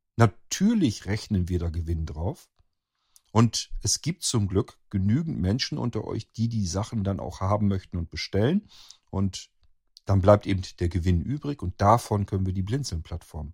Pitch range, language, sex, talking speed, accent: 90-115 Hz, German, male, 165 wpm, German